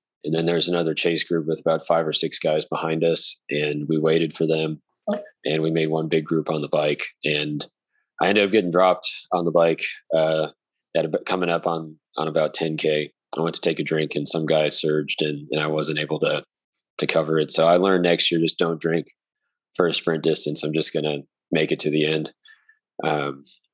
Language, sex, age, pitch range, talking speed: English, male, 20-39, 75-85 Hz, 220 wpm